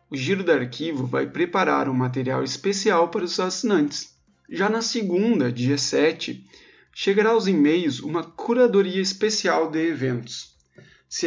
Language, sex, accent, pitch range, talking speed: Portuguese, male, Brazilian, 135-195 Hz, 140 wpm